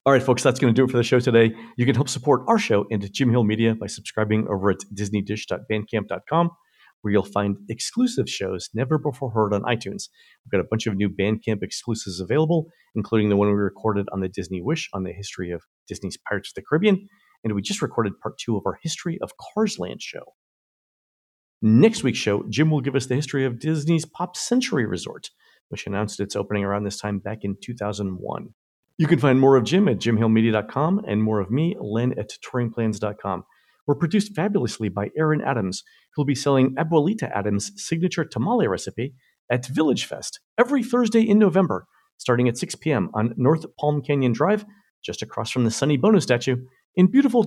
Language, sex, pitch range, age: English, male, 105-155 Hz, 50-69